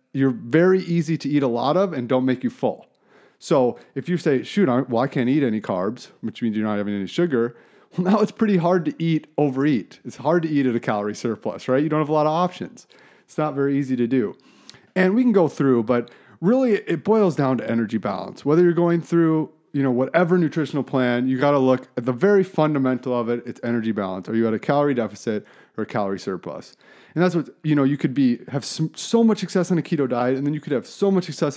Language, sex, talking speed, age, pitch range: English, male, 245 wpm, 30-49, 125-165 Hz